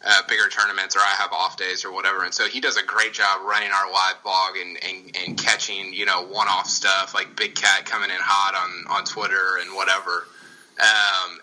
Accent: American